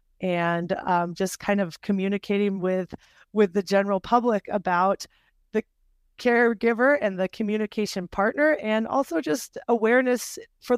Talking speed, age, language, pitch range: 130 wpm, 30-49, English, 180-215 Hz